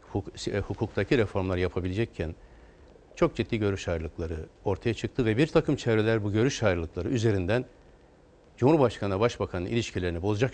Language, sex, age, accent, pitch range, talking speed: Turkish, male, 60-79, native, 90-125 Hz, 120 wpm